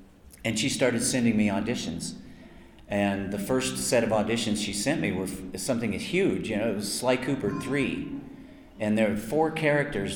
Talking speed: 185 wpm